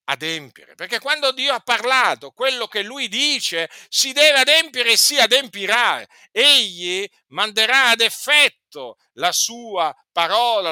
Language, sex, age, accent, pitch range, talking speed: Italian, male, 50-69, native, 180-250 Hz, 130 wpm